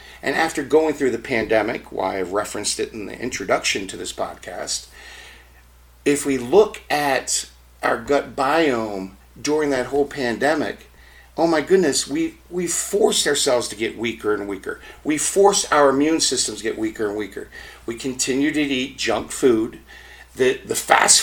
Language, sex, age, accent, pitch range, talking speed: English, male, 50-69, American, 115-160 Hz, 165 wpm